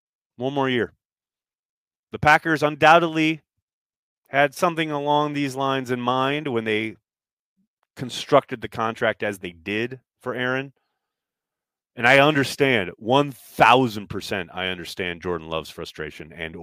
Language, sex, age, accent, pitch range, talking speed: English, male, 30-49, American, 100-150 Hz, 120 wpm